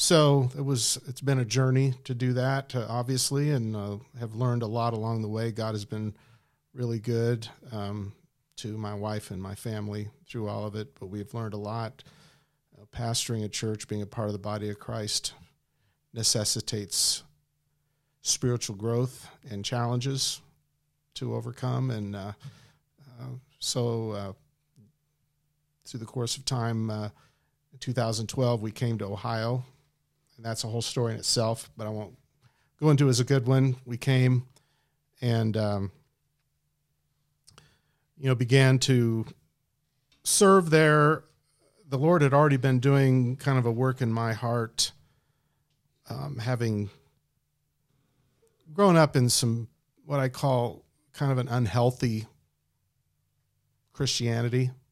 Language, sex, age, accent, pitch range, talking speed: English, male, 40-59, American, 115-140 Hz, 145 wpm